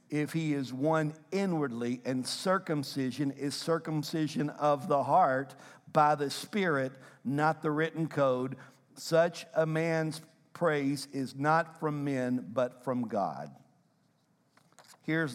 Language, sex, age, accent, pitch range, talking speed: English, male, 50-69, American, 140-170 Hz, 120 wpm